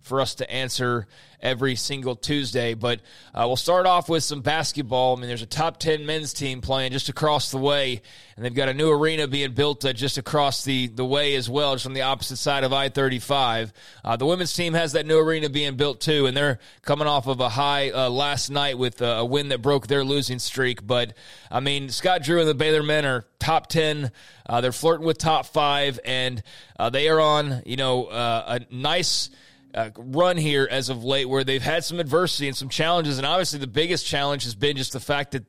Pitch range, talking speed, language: 130-150 Hz, 220 wpm, English